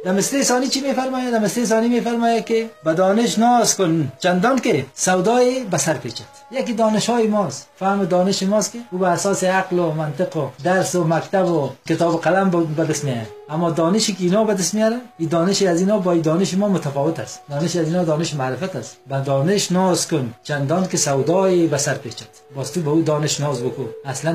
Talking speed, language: 195 wpm, Persian